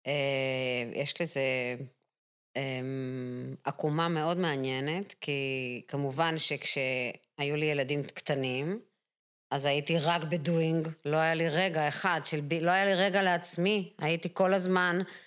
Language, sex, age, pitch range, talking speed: Hebrew, female, 20-39, 145-200 Hz, 120 wpm